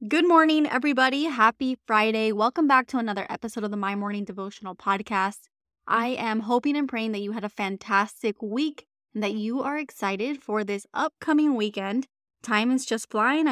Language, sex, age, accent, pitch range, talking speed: English, female, 20-39, American, 210-255 Hz, 180 wpm